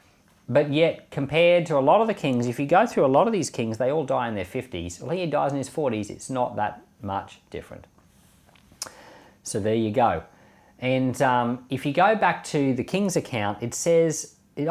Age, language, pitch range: 40-59, English, 105-155 Hz